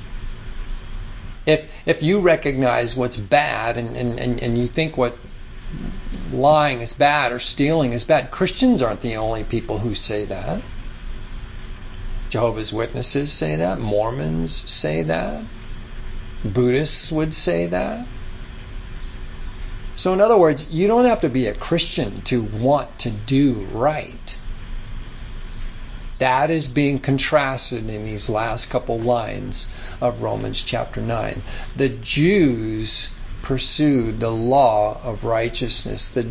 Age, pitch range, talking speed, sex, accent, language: 50-69, 110-135 Hz, 125 wpm, male, American, English